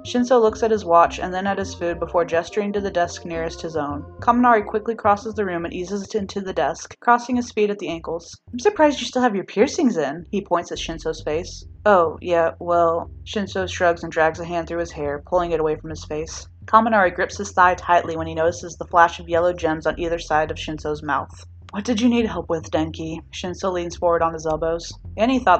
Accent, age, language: American, 20-39, English